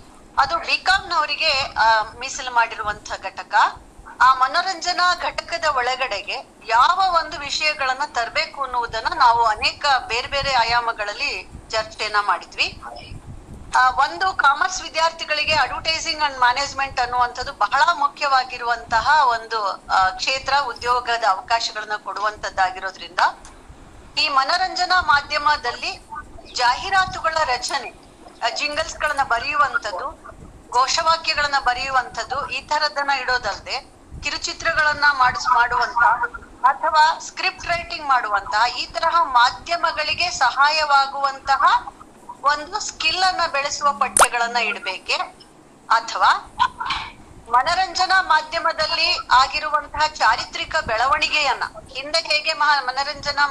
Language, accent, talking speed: Kannada, native, 80 wpm